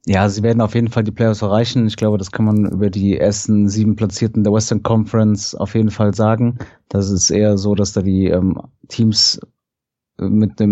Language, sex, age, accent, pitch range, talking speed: German, male, 30-49, German, 105-115 Hz, 205 wpm